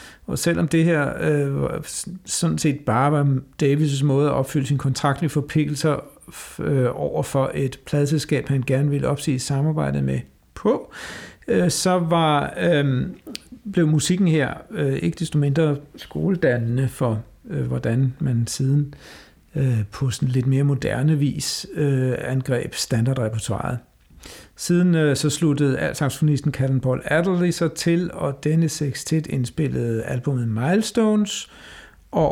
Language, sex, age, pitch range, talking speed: Danish, male, 60-79, 130-160 Hz, 135 wpm